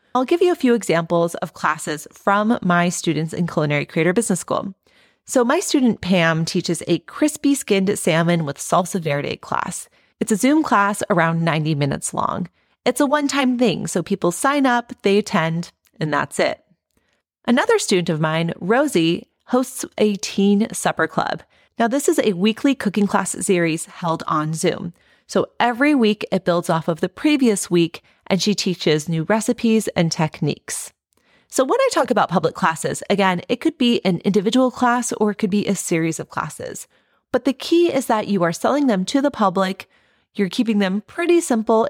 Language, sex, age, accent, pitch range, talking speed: English, female, 30-49, American, 170-245 Hz, 180 wpm